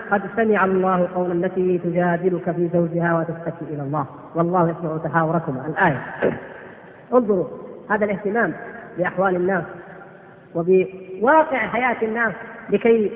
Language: Arabic